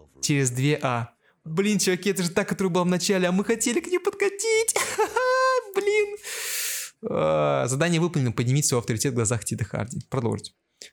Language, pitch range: Russian, 125-195 Hz